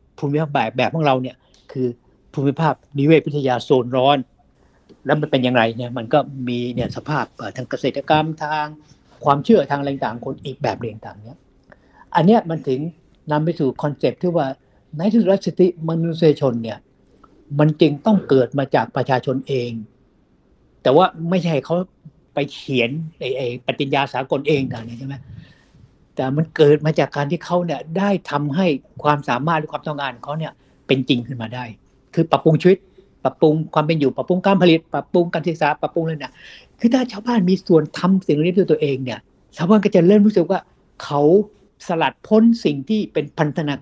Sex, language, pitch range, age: male, Thai, 130-170 Hz, 60-79